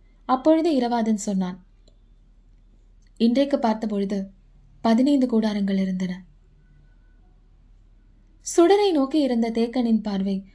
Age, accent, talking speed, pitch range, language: 20-39, native, 75 wpm, 185-255 Hz, Tamil